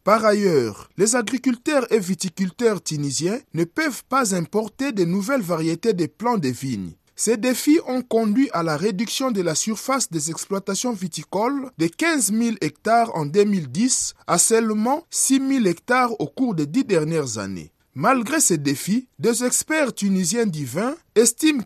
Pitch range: 175-250 Hz